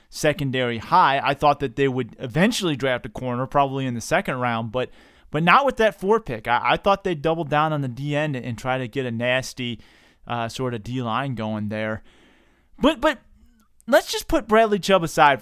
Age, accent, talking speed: 30-49, American, 210 wpm